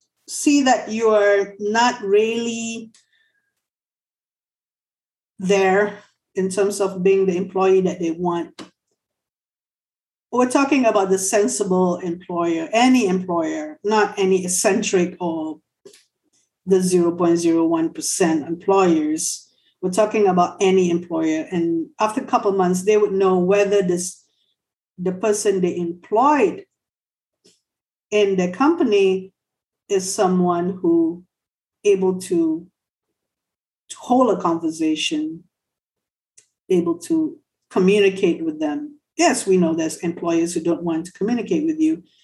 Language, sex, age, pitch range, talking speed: English, female, 50-69, 175-225 Hz, 115 wpm